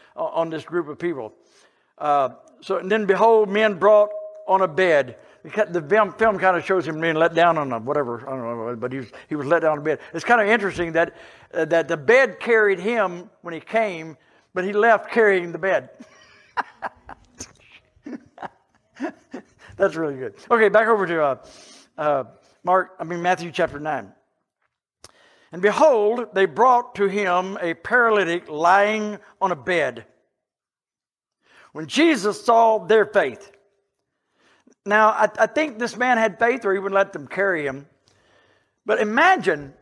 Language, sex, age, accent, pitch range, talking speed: English, male, 60-79, American, 165-220 Hz, 165 wpm